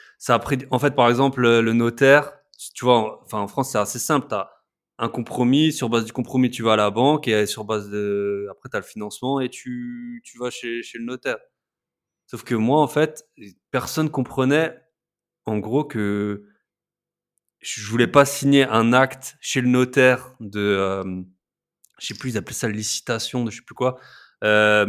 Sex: male